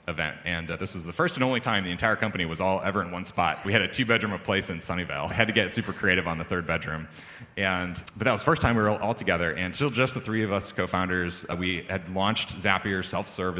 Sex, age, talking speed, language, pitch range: male, 30-49, 275 wpm, English, 90-115 Hz